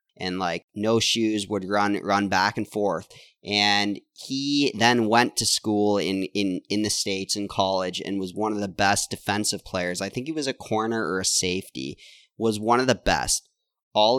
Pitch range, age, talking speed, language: 95-110 Hz, 30-49, 195 wpm, English